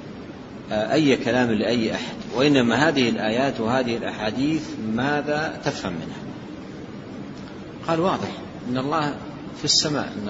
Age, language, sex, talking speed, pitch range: 50-69, Arabic, male, 110 wpm, 115-155 Hz